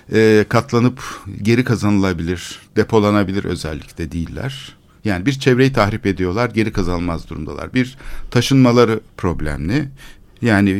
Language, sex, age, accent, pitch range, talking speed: Turkish, male, 60-79, native, 95-125 Hz, 100 wpm